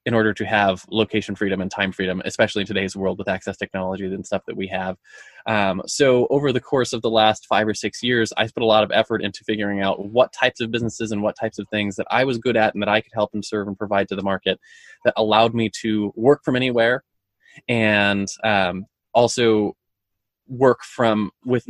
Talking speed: 225 wpm